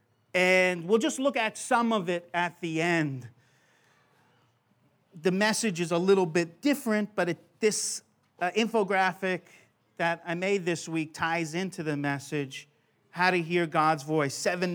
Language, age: English, 40-59